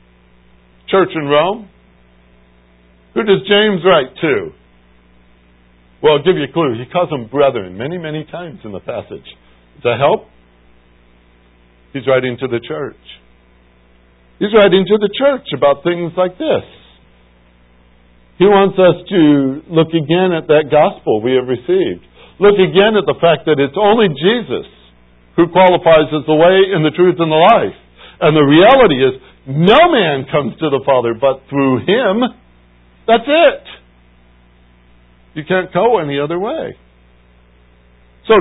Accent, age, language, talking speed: American, 60-79, English, 145 wpm